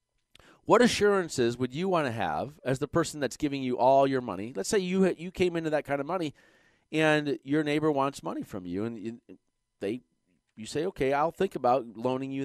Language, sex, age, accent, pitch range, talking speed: English, male, 40-59, American, 110-160 Hz, 210 wpm